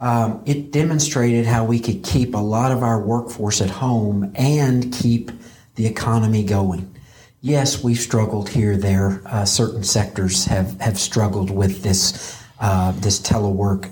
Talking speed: 150 wpm